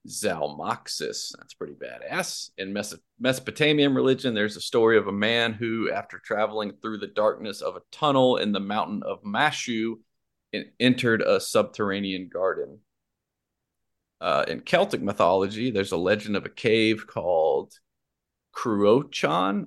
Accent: American